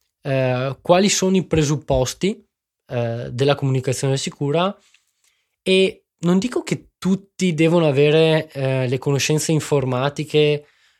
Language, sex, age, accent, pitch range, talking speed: Italian, male, 20-39, native, 135-175 Hz, 110 wpm